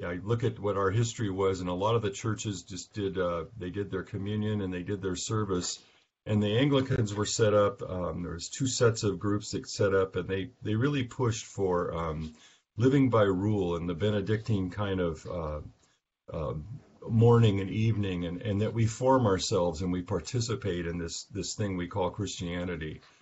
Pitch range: 95-120 Hz